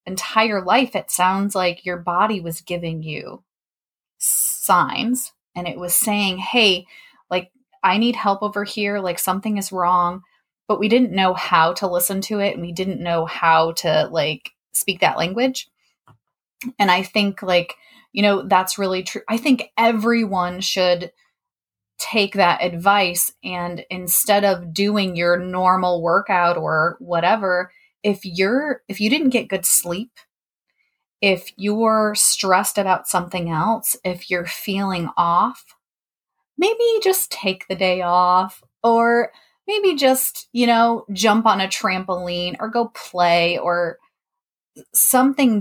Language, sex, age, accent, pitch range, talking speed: English, female, 20-39, American, 180-220 Hz, 140 wpm